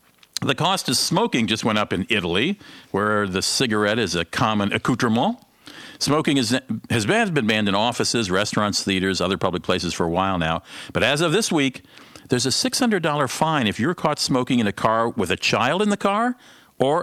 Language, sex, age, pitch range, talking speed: English, male, 50-69, 100-135 Hz, 190 wpm